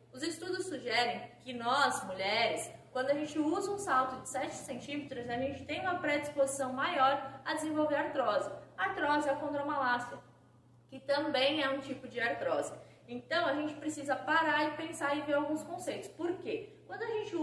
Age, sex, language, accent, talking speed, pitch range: 20-39, female, Portuguese, Brazilian, 170 wpm, 255-320 Hz